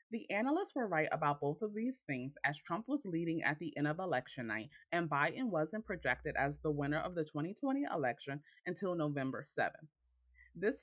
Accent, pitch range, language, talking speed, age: American, 145-210 Hz, English, 190 wpm, 30-49